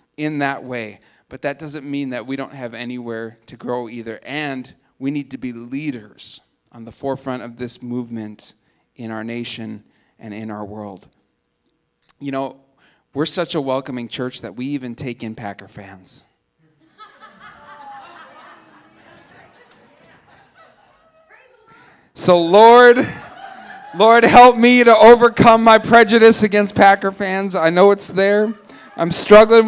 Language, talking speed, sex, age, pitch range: English, 135 wpm, male, 40-59, 135-200 Hz